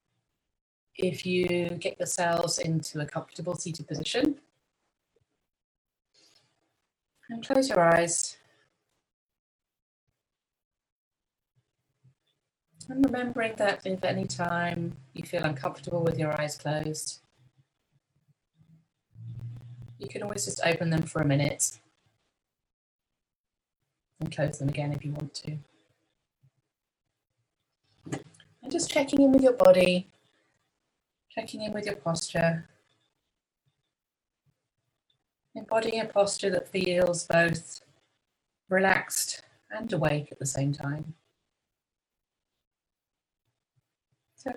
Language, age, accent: English, 30-49, British